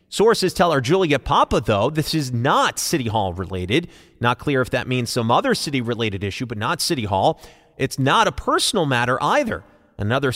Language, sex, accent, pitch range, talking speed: English, male, American, 120-175 Hz, 190 wpm